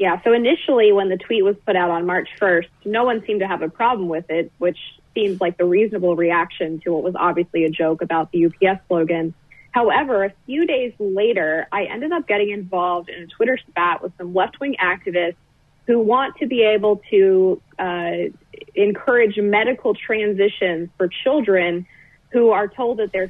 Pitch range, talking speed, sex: 175-215 Hz, 185 wpm, female